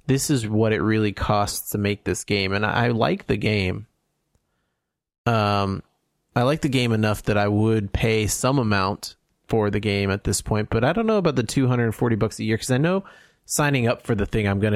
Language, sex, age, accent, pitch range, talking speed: English, male, 30-49, American, 100-120 Hz, 220 wpm